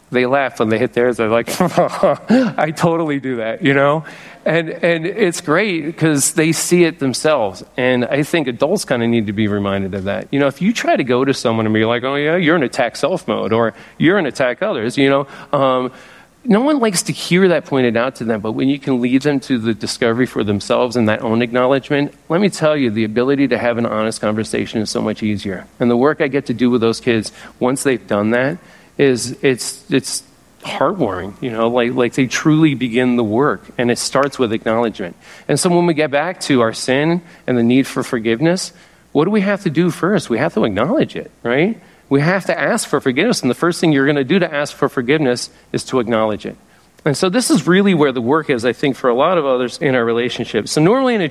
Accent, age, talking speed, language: American, 40-59, 240 wpm, English